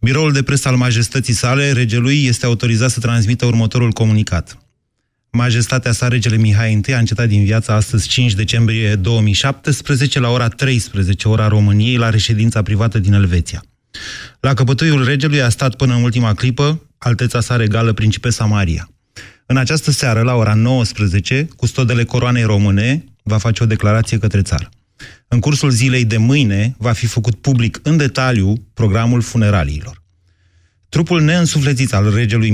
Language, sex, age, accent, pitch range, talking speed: Romanian, male, 30-49, native, 110-130 Hz, 150 wpm